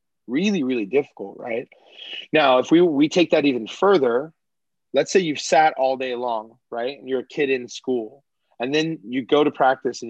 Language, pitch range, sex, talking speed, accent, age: English, 125-160 Hz, male, 195 wpm, American, 30-49